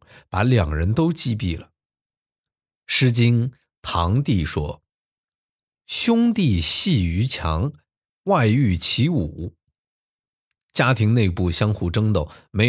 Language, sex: Chinese, male